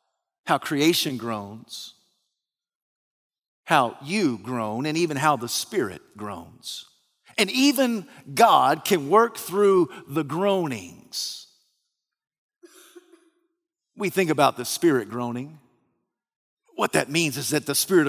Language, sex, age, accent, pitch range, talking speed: English, male, 50-69, American, 160-240 Hz, 110 wpm